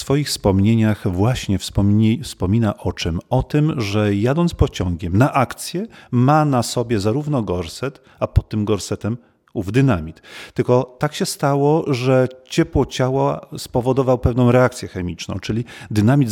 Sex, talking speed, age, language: male, 145 wpm, 40-59, Polish